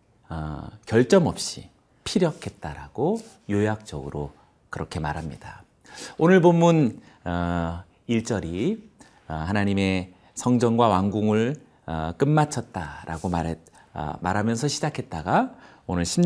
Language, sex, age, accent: Korean, male, 40-59, native